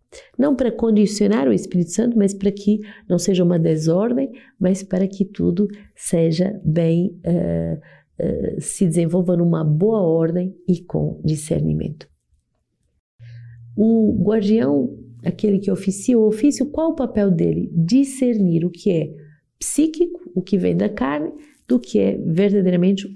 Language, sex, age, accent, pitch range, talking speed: Portuguese, female, 50-69, Brazilian, 170-220 Hz, 140 wpm